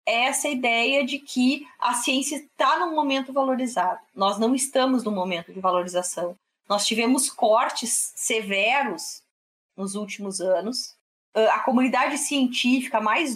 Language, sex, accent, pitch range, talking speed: Portuguese, female, Brazilian, 205-255 Hz, 125 wpm